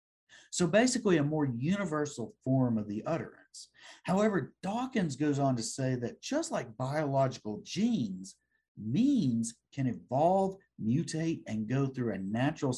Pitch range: 105-155 Hz